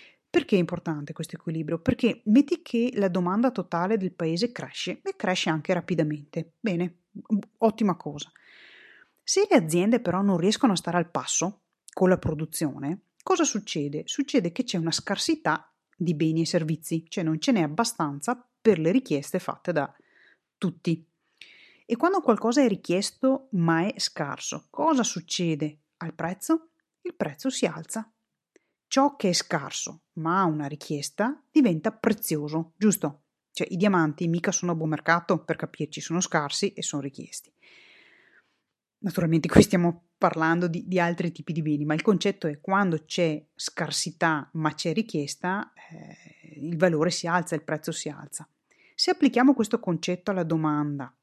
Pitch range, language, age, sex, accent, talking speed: 160-215 Hz, Italian, 30-49, female, native, 155 wpm